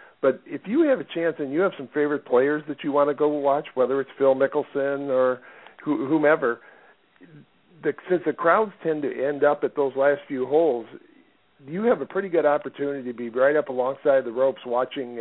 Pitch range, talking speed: 125-150 Hz, 200 wpm